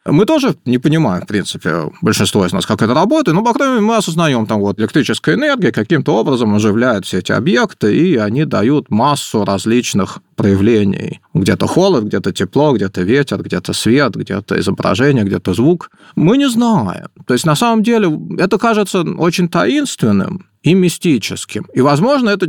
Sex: male